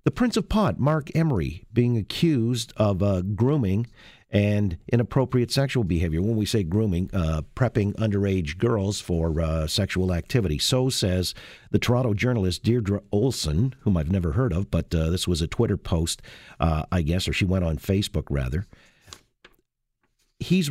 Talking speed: 160 wpm